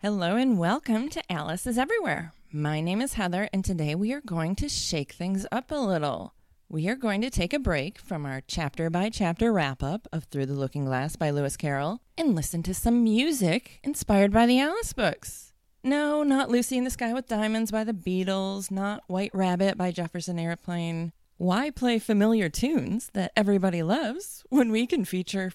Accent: American